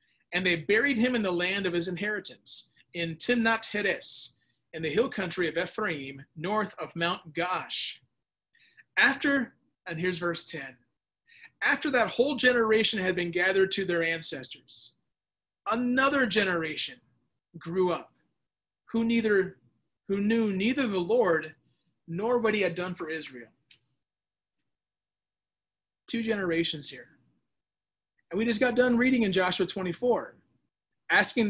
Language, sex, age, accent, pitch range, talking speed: English, male, 30-49, American, 165-230 Hz, 130 wpm